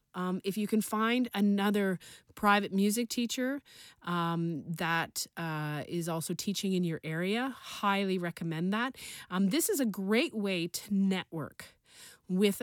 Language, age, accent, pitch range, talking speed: English, 30-49, American, 180-225 Hz, 145 wpm